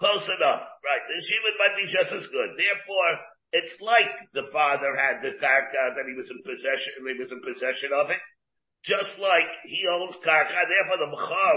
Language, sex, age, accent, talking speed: English, male, 50-69, American, 190 wpm